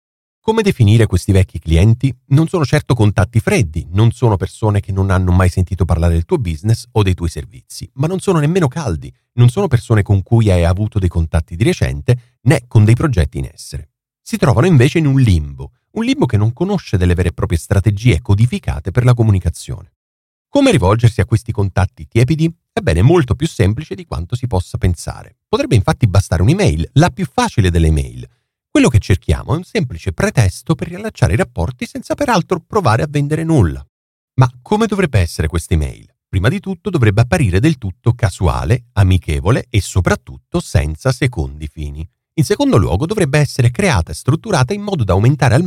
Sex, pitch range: male, 90-145 Hz